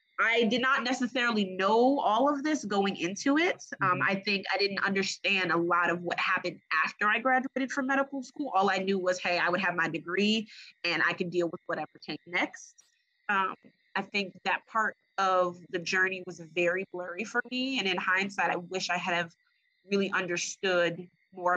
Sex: female